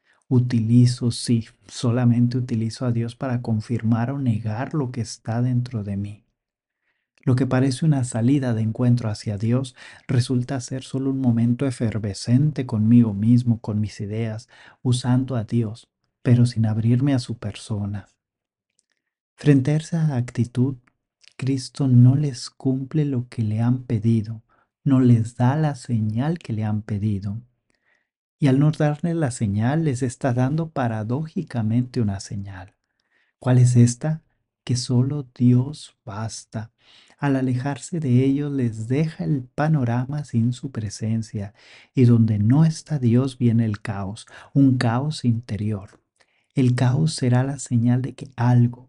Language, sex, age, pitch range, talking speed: English, male, 40-59, 115-135 Hz, 140 wpm